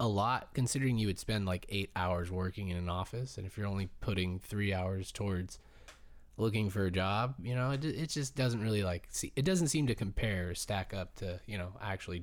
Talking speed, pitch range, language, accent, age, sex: 220 wpm, 90-115 Hz, English, American, 20-39, male